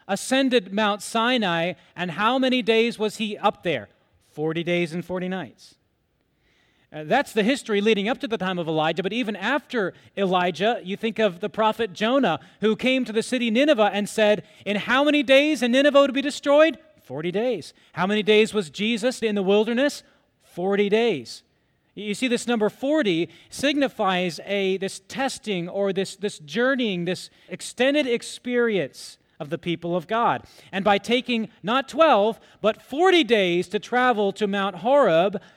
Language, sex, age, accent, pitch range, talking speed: English, male, 30-49, American, 185-245 Hz, 170 wpm